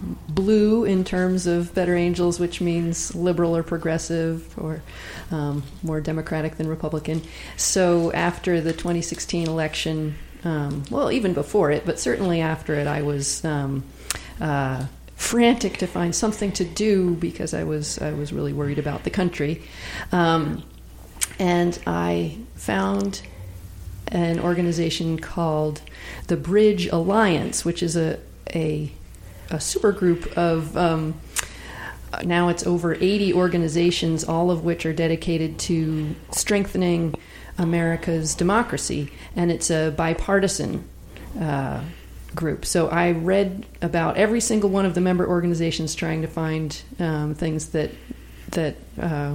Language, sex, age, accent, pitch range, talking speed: English, female, 40-59, American, 155-180 Hz, 130 wpm